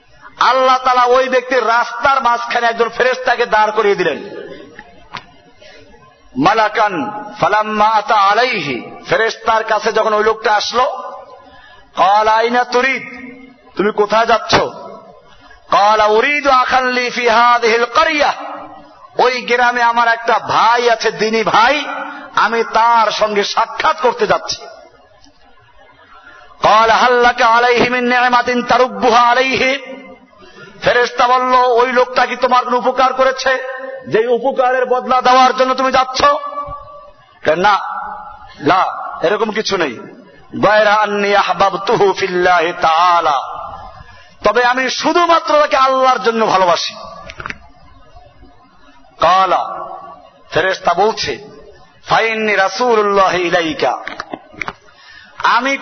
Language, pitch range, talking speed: Bengali, 225-260 Hz, 60 wpm